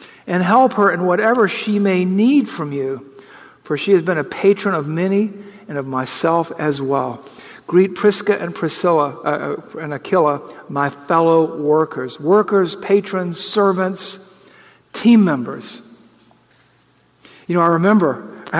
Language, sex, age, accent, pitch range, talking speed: English, male, 50-69, American, 145-190 Hz, 140 wpm